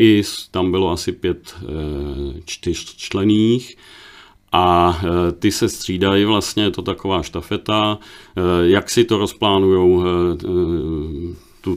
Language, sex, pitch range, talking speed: Czech, male, 85-100 Hz, 105 wpm